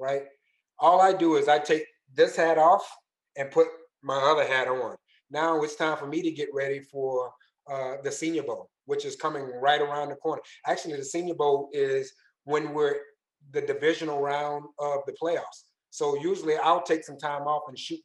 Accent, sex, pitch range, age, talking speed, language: American, male, 140-170 Hz, 30-49, 195 wpm, English